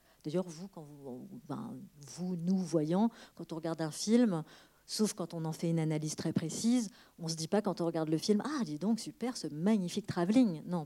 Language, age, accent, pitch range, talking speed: French, 40-59, French, 160-200 Hz, 215 wpm